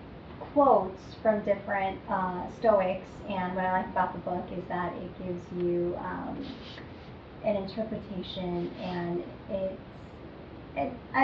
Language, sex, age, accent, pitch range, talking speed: English, female, 30-49, American, 185-215 Hz, 115 wpm